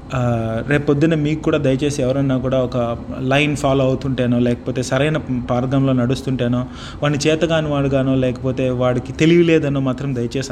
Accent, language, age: native, Telugu, 30-49